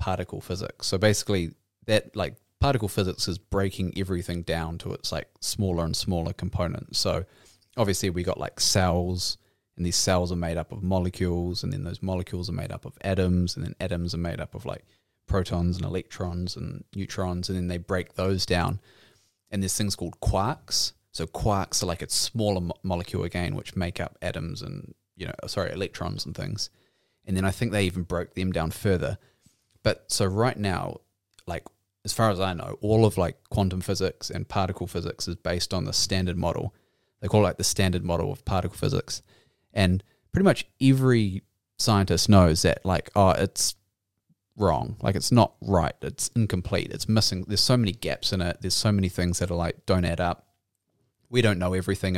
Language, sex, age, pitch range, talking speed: Punjabi, male, 20-39, 90-100 Hz, 195 wpm